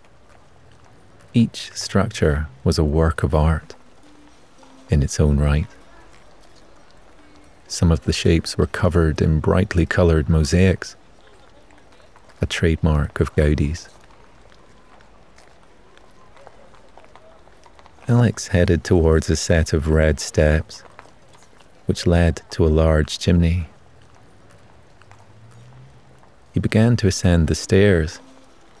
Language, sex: English, male